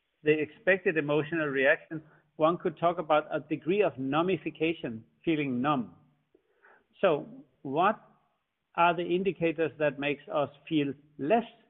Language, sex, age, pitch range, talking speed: English, male, 60-79, 145-165 Hz, 125 wpm